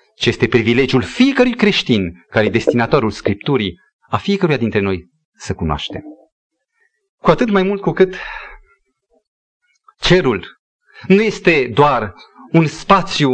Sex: male